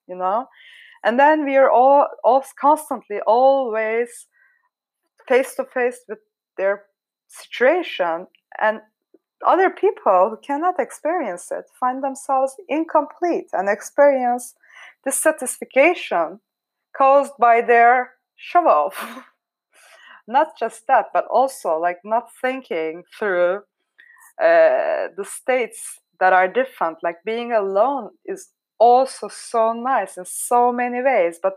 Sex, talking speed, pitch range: female, 115 wpm, 205-285 Hz